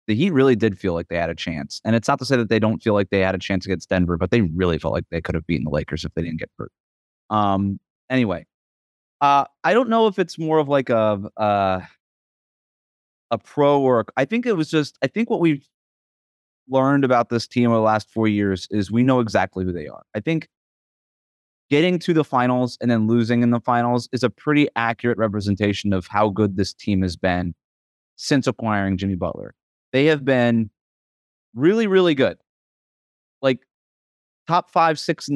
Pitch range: 95-135 Hz